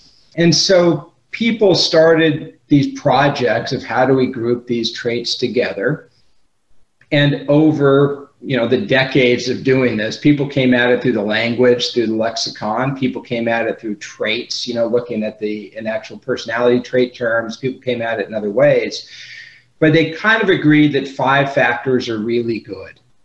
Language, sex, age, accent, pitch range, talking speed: English, male, 40-59, American, 125-150 Hz, 170 wpm